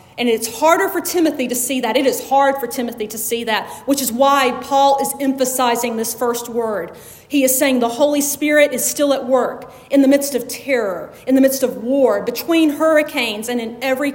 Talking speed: 210 wpm